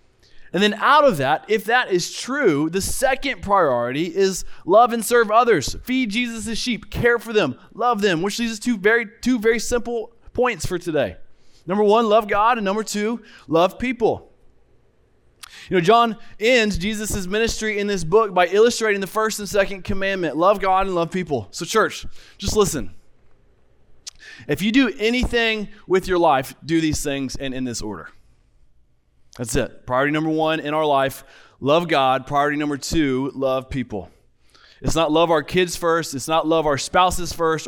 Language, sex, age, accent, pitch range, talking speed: English, male, 20-39, American, 150-220 Hz, 175 wpm